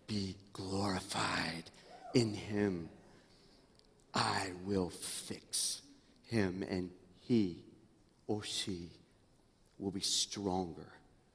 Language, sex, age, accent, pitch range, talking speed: English, male, 50-69, American, 100-135 Hz, 80 wpm